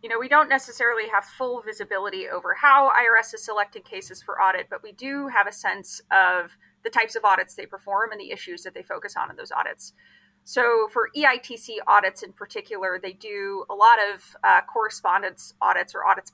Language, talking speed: English, 200 wpm